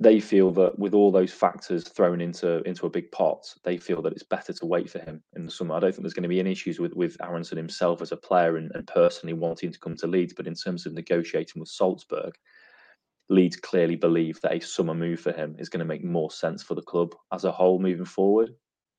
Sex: male